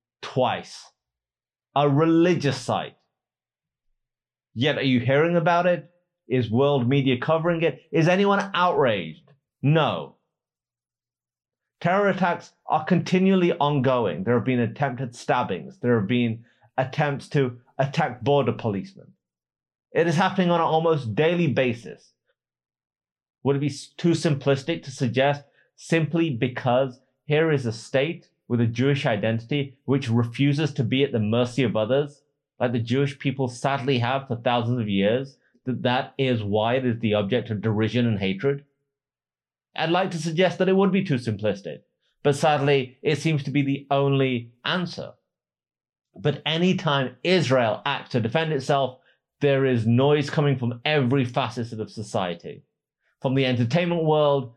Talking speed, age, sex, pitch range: 145 wpm, 30-49, male, 120-155 Hz